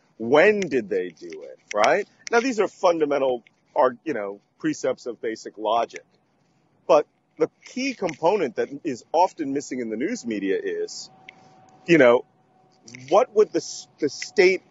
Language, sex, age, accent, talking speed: English, male, 40-59, American, 150 wpm